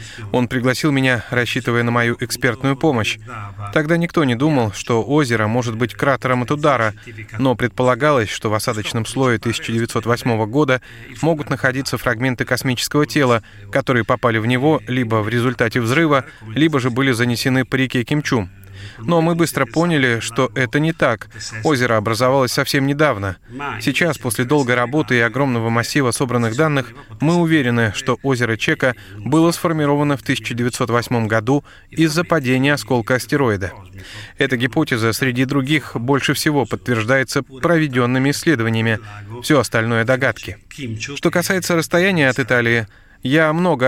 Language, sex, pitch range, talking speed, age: Russian, male, 115-145 Hz, 140 wpm, 20-39